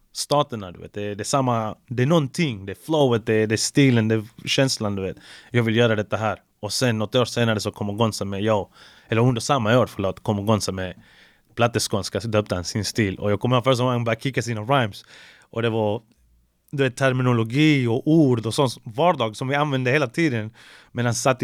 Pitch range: 105-130 Hz